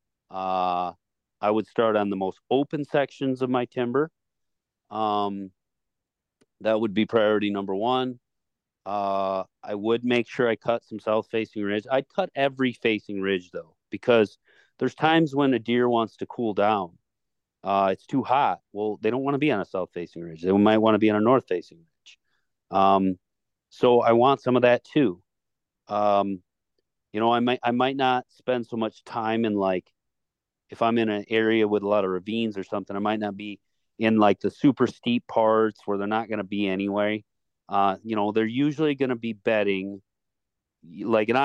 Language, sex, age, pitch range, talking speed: English, male, 40-59, 100-125 Hz, 195 wpm